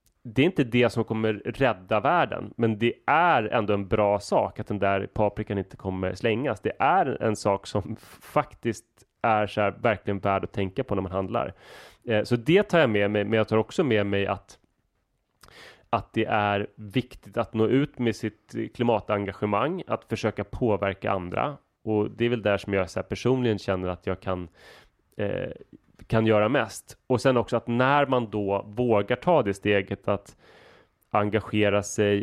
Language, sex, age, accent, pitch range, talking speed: Swedish, male, 30-49, native, 100-115 Hz, 185 wpm